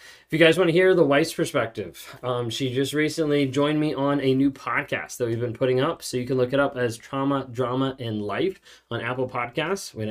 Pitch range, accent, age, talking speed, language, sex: 125-145 Hz, American, 20-39, 230 wpm, English, male